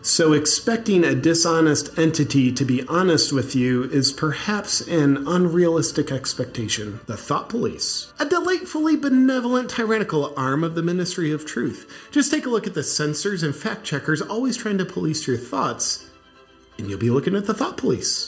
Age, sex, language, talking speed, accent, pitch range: 40-59, male, English, 170 wpm, American, 130-200 Hz